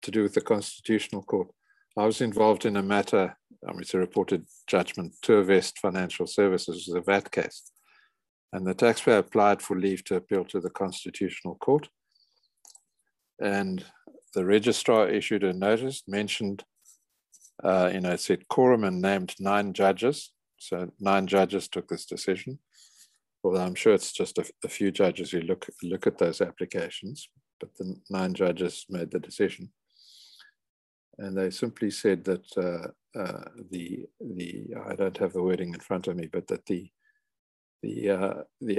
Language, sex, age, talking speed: English, male, 50-69, 165 wpm